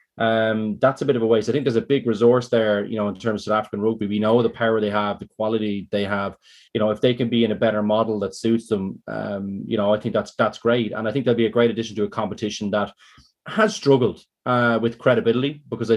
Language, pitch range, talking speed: English, 110-135 Hz, 265 wpm